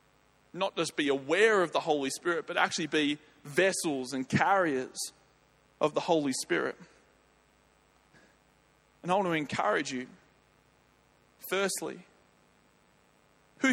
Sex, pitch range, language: male, 150-210 Hz, English